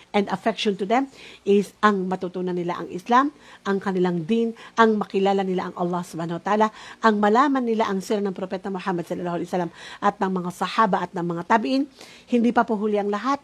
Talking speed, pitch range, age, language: 200 wpm, 195-225 Hz, 50-69, Filipino